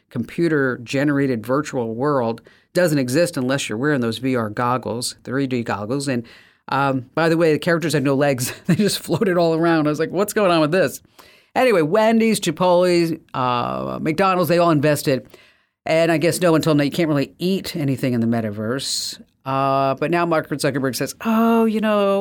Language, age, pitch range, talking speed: English, 50-69, 130-175 Hz, 185 wpm